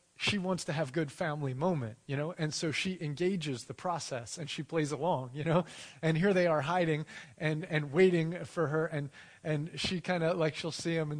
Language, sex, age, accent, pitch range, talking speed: English, male, 30-49, American, 140-175 Hz, 220 wpm